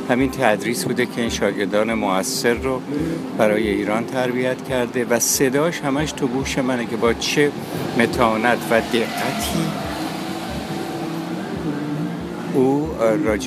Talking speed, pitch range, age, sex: 115 wpm, 115-150 Hz, 60-79, male